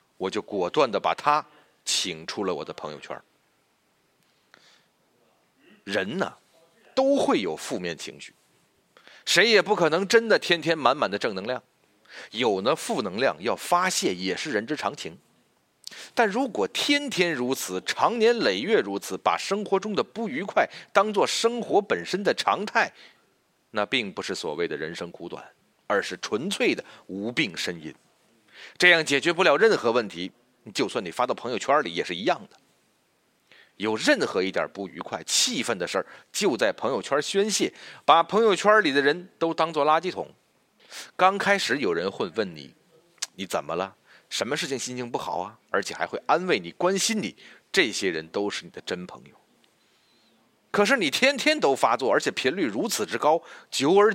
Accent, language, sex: native, Chinese, male